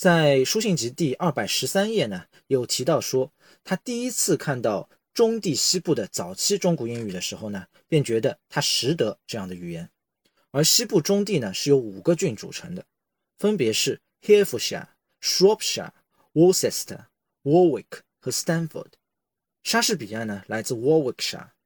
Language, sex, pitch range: Chinese, male, 130-190 Hz